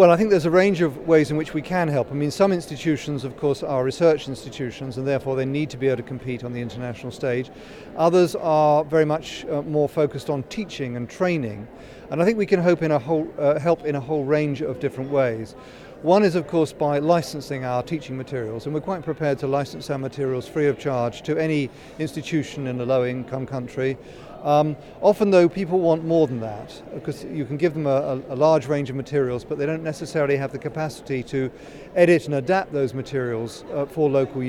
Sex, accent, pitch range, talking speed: male, British, 135-160 Hz, 220 wpm